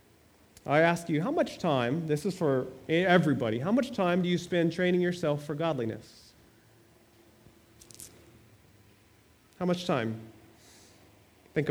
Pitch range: 115-180 Hz